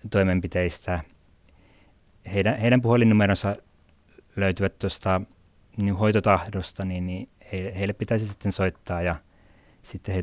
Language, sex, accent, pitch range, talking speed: Finnish, male, native, 90-100 Hz, 105 wpm